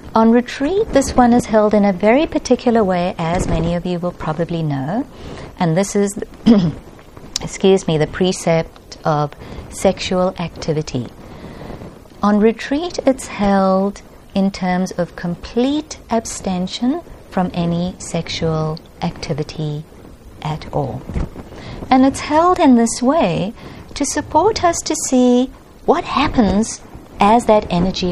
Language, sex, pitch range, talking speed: English, female, 175-245 Hz, 125 wpm